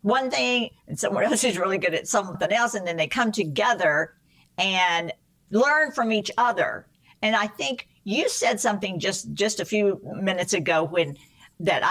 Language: English